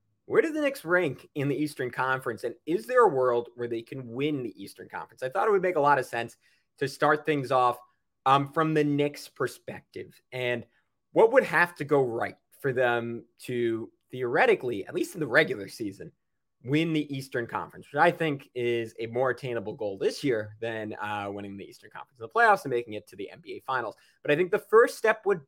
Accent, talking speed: American, 220 wpm